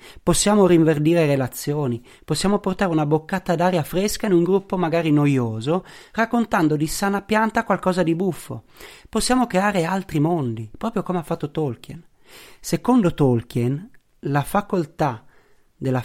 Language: Italian